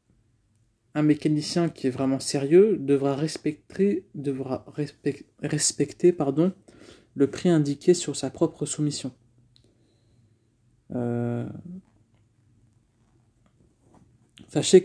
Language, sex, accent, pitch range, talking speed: French, male, French, 115-150 Hz, 75 wpm